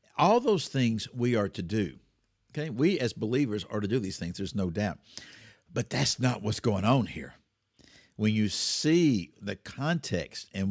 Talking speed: 180 wpm